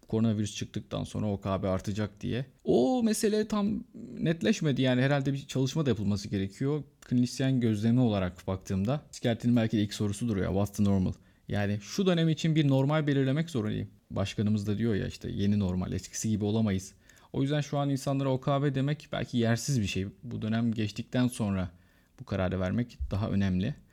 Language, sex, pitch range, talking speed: Turkish, male, 95-120 Hz, 170 wpm